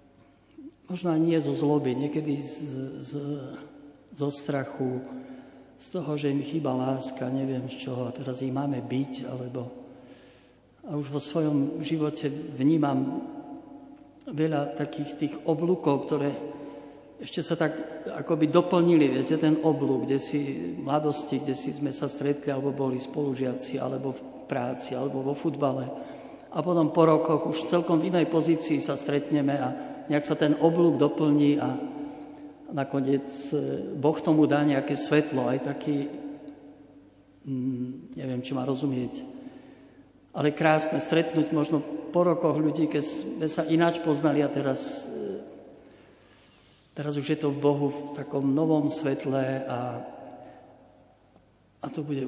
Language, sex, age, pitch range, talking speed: Slovak, male, 50-69, 130-155 Hz, 140 wpm